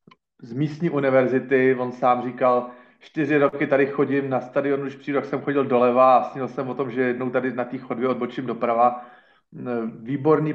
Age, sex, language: 40-59, male, Slovak